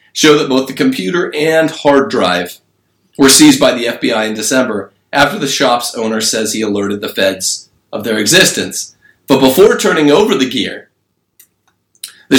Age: 40-59